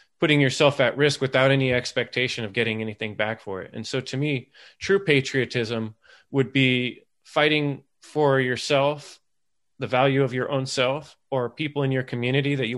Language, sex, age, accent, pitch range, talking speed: English, male, 20-39, American, 110-140 Hz, 175 wpm